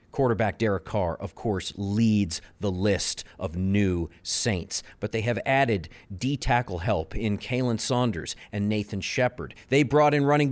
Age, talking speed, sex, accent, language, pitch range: 40-59, 155 wpm, male, American, English, 105-140 Hz